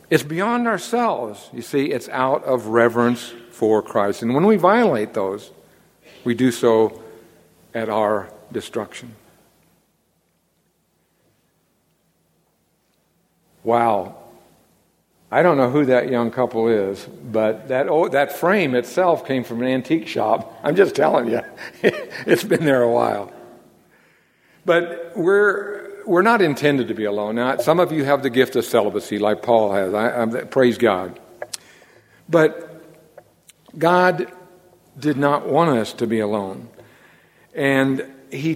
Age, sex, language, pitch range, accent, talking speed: 60-79, male, English, 115-160 Hz, American, 135 wpm